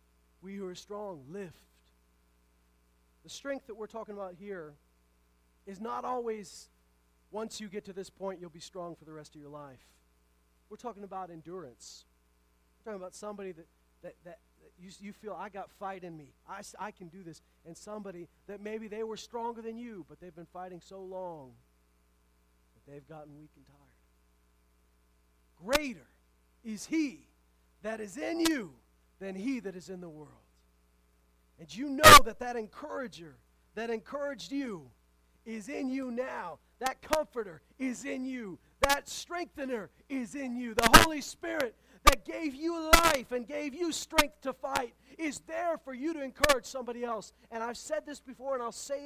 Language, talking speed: English, 170 wpm